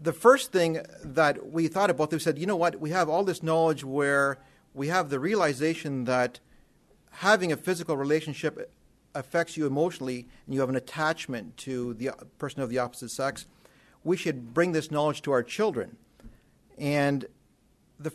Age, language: 50-69, English